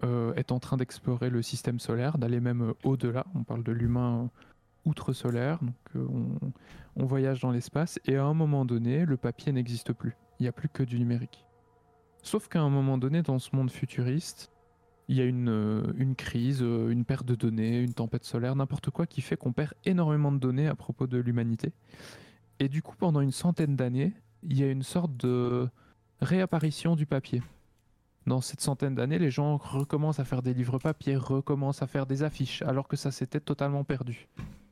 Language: French